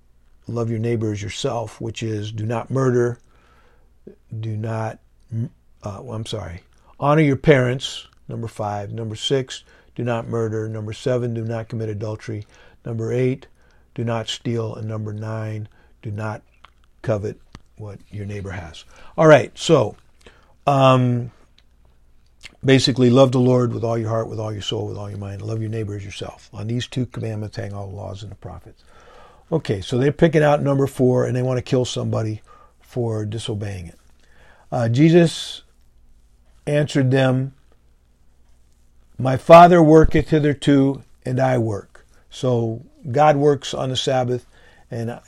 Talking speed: 155 wpm